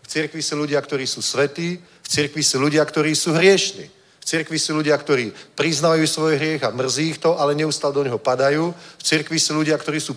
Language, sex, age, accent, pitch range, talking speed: Czech, male, 40-59, native, 135-155 Hz, 220 wpm